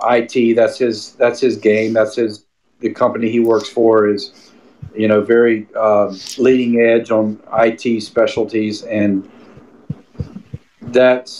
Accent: American